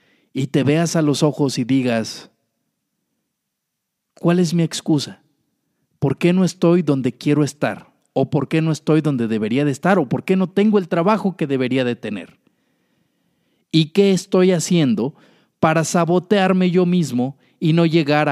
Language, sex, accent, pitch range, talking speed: Spanish, male, Mexican, 130-160 Hz, 165 wpm